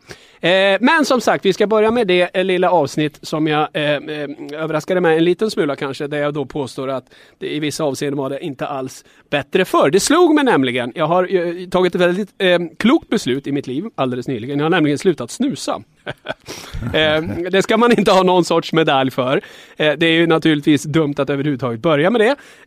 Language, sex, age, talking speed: English, male, 30-49, 210 wpm